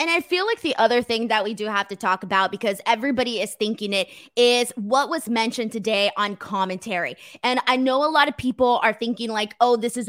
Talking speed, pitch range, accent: 230 wpm, 235-310 Hz, American